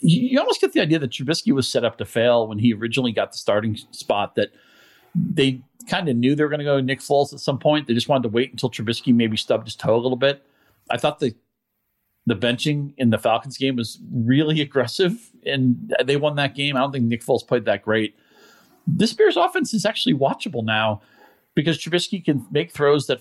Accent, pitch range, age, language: American, 110-140 Hz, 40-59, English